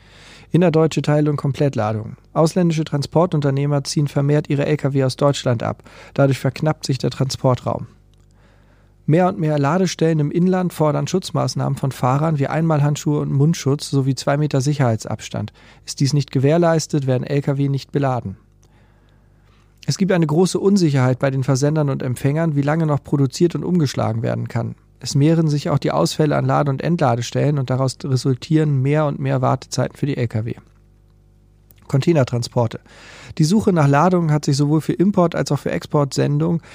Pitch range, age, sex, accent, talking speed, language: 125-155 Hz, 40-59, male, German, 155 wpm, German